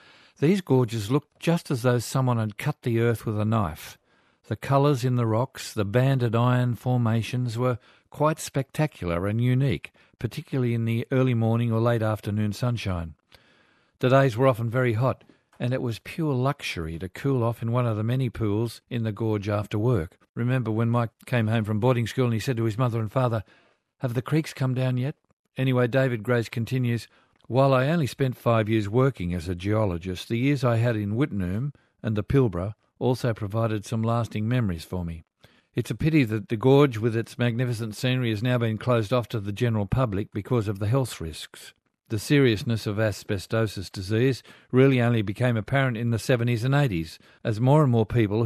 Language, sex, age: English, male, 50-69